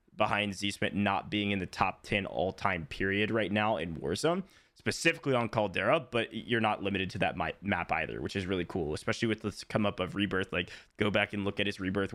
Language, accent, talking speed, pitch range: English, American, 215 wpm, 105-135 Hz